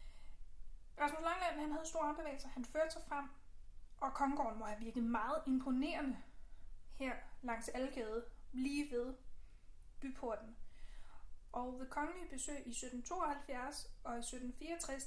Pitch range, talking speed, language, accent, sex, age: 230-285 Hz, 125 wpm, Danish, native, female, 30-49